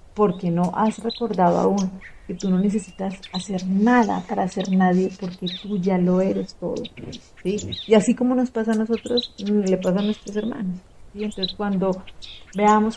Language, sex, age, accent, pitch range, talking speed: Spanish, female, 40-59, Colombian, 185-215 Hz, 175 wpm